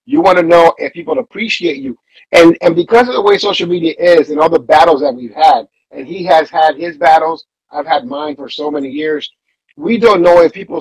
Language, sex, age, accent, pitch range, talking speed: English, male, 50-69, American, 150-235 Hz, 235 wpm